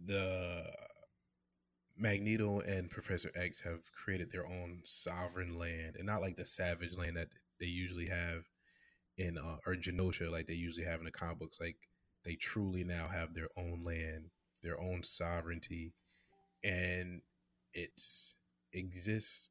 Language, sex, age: English, male, 20-39